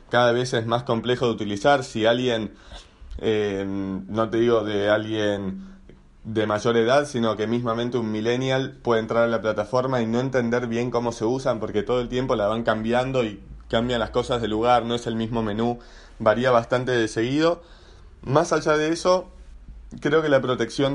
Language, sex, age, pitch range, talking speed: Spanish, male, 20-39, 110-130 Hz, 185 wpm